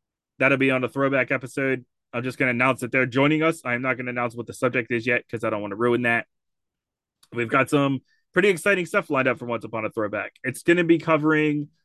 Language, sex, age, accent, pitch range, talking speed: English, male, 20-39, American, 115-140 Hz, 255 wpm